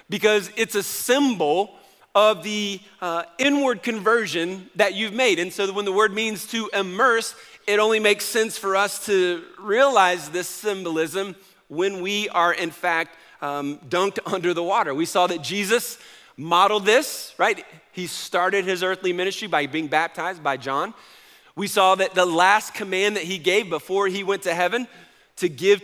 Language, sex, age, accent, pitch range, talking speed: English, male, 40-59, American, 170-205 Hz, 170 wpm